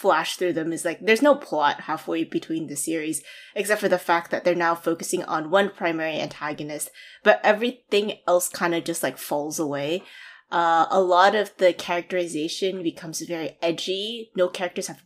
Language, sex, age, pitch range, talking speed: English, female, 20-39, 160-200 Hz, 180 wpm